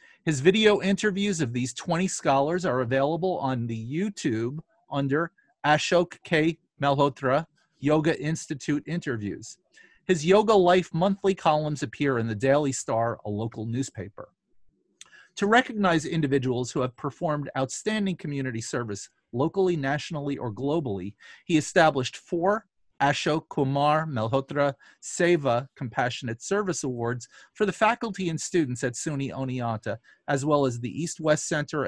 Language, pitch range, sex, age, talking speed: English, 130-175 Hz, male, 40-59, 130 wpm